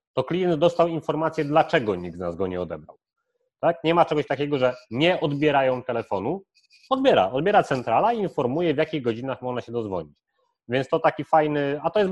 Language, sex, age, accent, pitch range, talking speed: Polish, male, 30-49, native, 120-155 Hz, 190 wpm